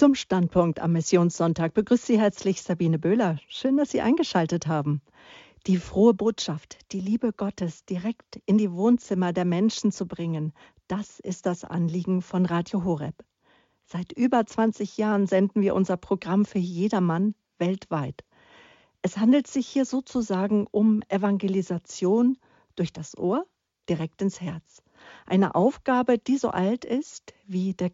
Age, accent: 50-69, German